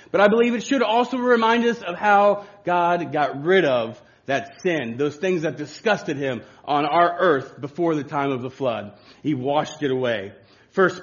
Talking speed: 190 wpm